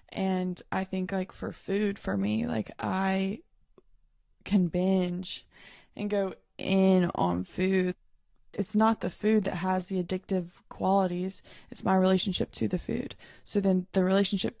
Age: 20-39